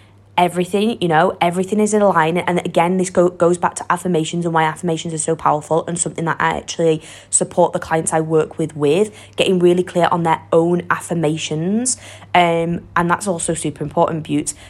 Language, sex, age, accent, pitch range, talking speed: English, female, 20-39, British, 160-185 Hz, 190 wpm